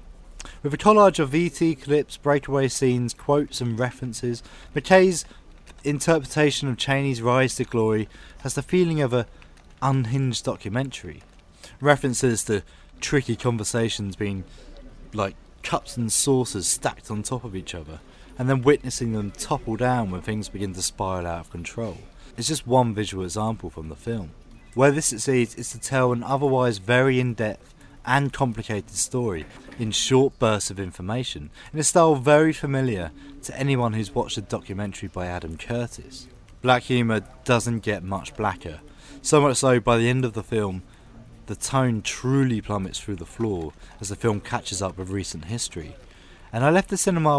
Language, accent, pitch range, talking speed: English, British, 100-135 Hz, 165 wpm